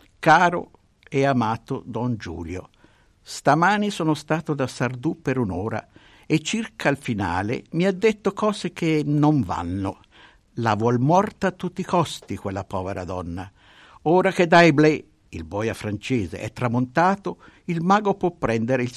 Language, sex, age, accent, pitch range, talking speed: Italian, male, 60-79, native, 110-170 Hz, 145 wpm